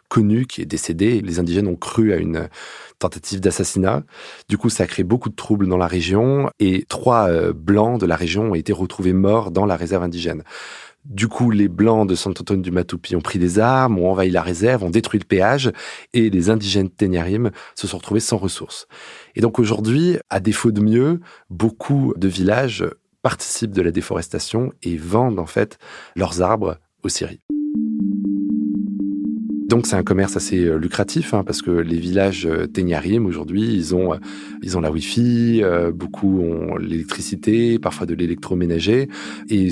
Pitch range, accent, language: 85-110 Hz, French, French